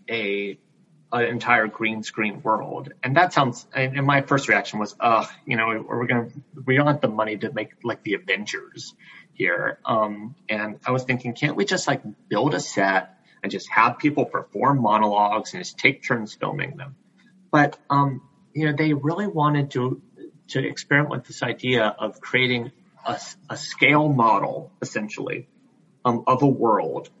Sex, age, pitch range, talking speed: male, 30-49, 110-140 Hz, 175 wpm